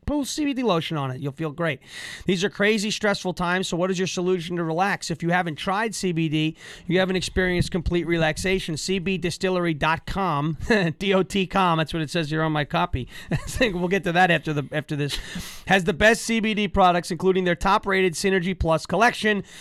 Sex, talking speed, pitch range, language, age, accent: male, 185 wpm, 160-205 Hz, English, 30-49, American